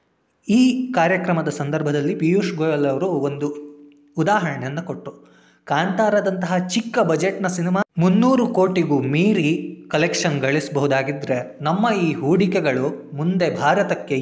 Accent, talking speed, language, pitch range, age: native, 95 wpm, Kannada, 135-175 Hz, 20-39